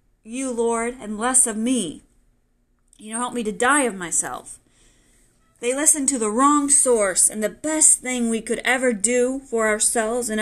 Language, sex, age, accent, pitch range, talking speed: English, female, 30-49, American, 205-250 Hz, 180 wpm